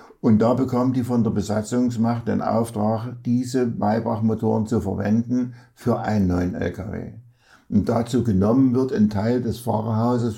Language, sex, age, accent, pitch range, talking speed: German, male, 60-79, German, 105-125 Hz, 145 wpm